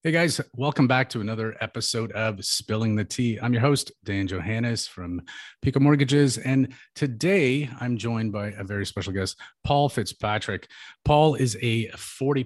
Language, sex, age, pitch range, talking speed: English, male, 30-49, 95-125 Hz, 165 wpm